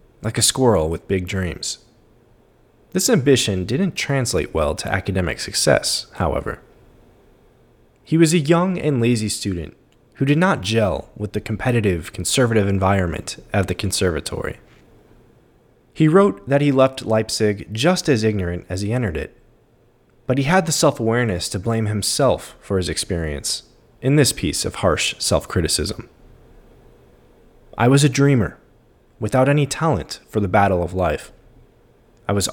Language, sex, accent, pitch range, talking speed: English, male, American, 100-135 Hz, 145 wpm